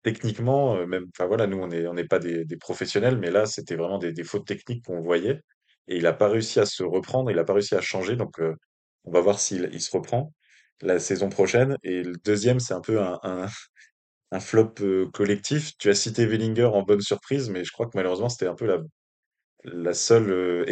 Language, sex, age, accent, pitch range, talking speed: French, male, 20-39, French, 90-110 Hz, 230 wpm